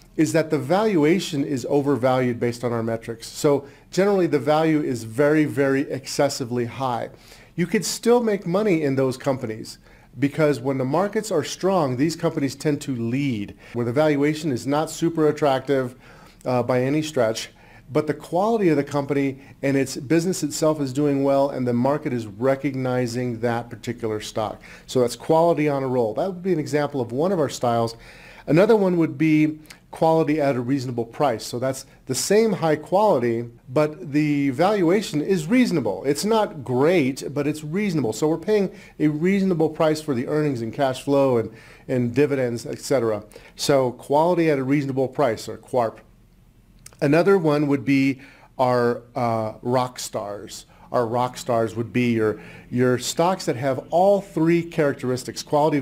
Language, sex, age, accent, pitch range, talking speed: English, male, 40-59, American, 125-155 Hz, 170 wpm